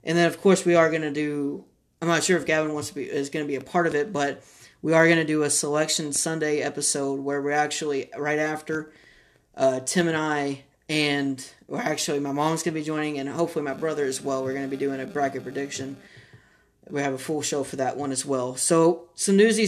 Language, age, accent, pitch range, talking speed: English, 30-49, American, 140-165 Hz, 240 wpm